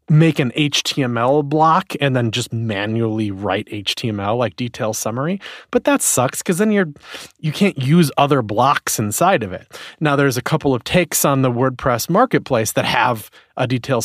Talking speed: 175 wpm